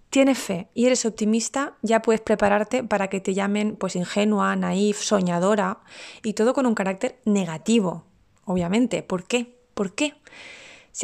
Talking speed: 145 wpm